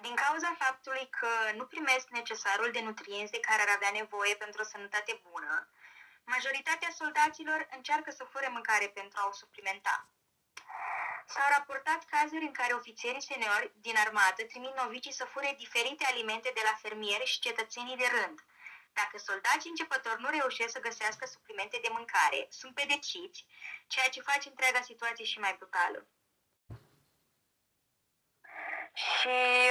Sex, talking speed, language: female, 140 wpm, Romanian